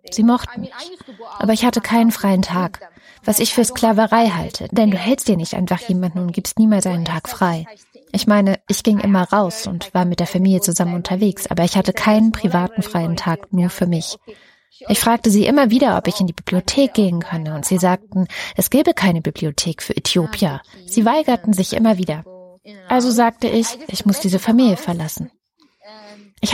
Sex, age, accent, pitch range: female, 20-39, German, 180-225 Hz